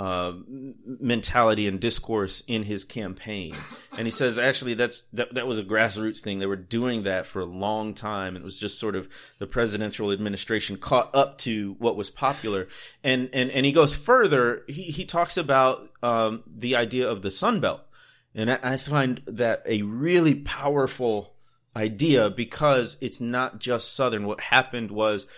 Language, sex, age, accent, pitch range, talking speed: English, male, 30-49, American, 105-130 Hz, 175 wpm